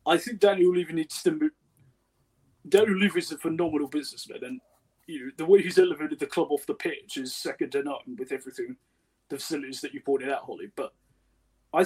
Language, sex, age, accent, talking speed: English, male, 20-39, British, 200 wpm